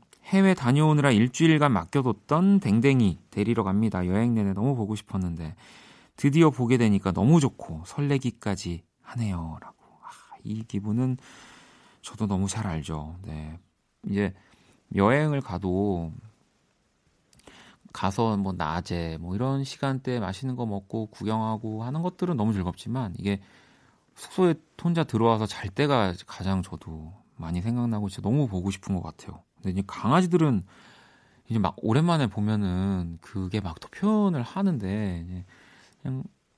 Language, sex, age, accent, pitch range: Korean, male, 40-59, native, 95-135 Hz